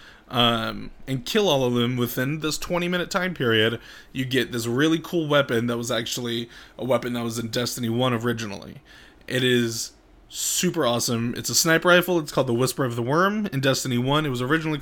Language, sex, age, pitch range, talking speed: English, male, 20-39, 120-150 Hz, 205 wpm